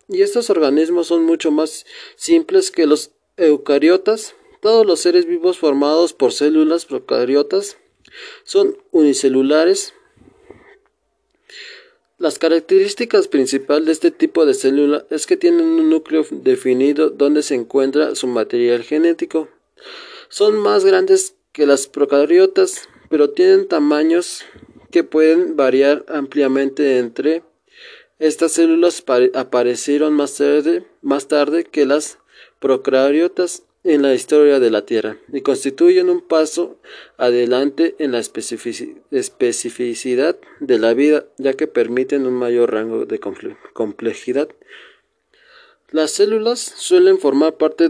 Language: Spanish